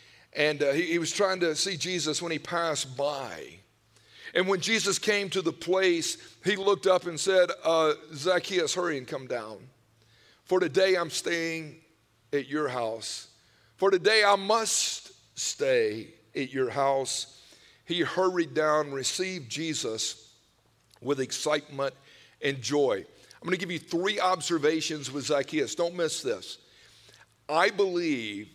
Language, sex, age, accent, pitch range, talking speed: English, male, 50-69, American, 145-195 Hz, 145 wpm